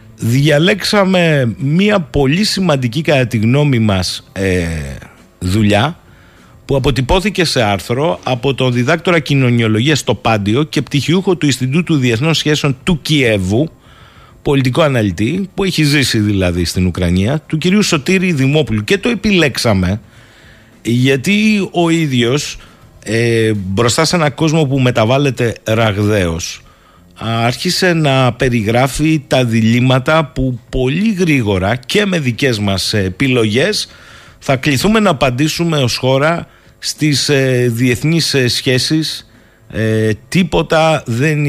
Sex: male